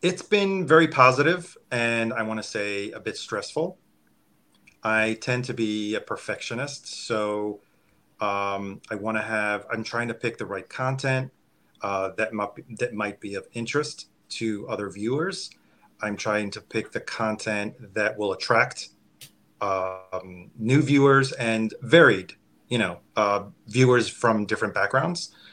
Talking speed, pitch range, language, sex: 145 wpm, 100-120 Hz, English, male